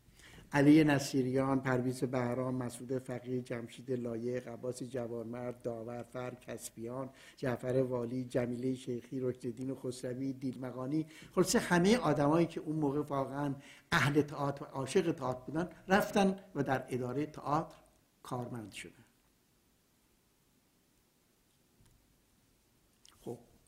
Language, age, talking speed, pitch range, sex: Persian, 60-79, 105 wpm, 125-155 Hz, male